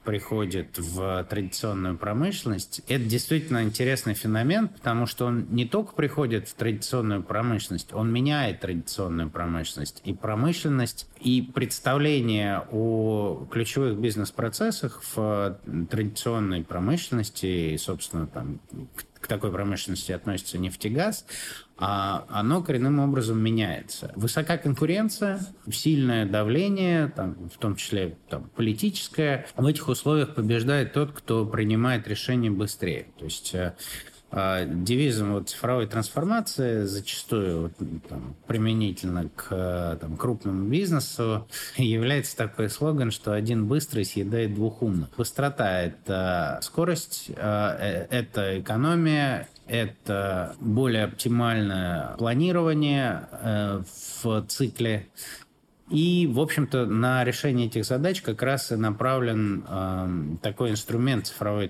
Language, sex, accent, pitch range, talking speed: Russian, male, native, 100-135 Hz, 100 wpm